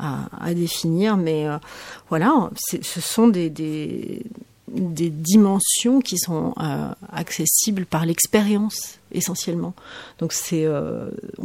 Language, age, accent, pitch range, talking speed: French, 40-59, French, 165-210 Hz, 115 wpm